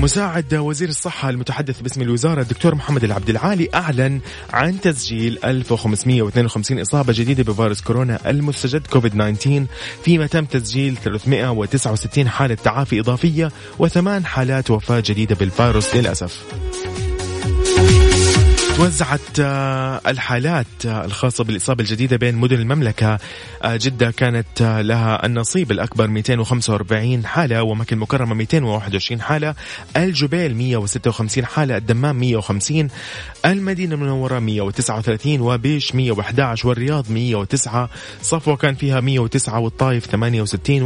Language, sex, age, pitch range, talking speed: Arabic, male, 30-49, 110-140 Hz, 105 wpm